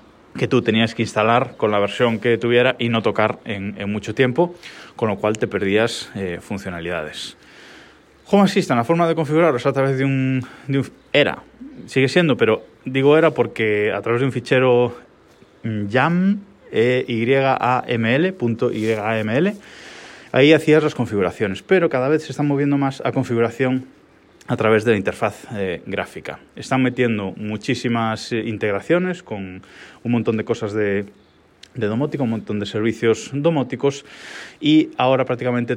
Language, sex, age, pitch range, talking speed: Spanish, male, 20-39, 105-135 Hz, 155 wpm